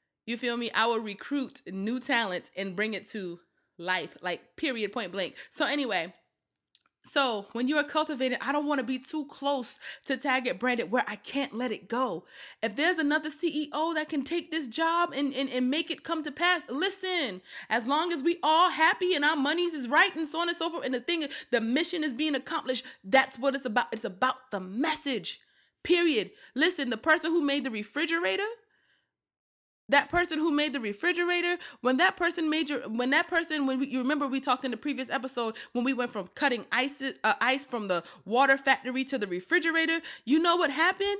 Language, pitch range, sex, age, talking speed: English, 255-320 Hz, female, 20-39, 210 wpm